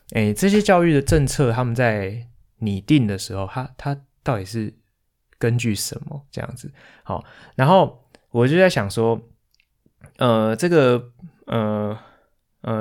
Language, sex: Chinese, male